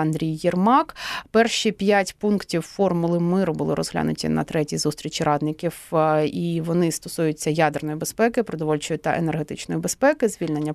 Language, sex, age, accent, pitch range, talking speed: Ukrainian, female, 30-49, native, 160-225 Hz, 130 wpm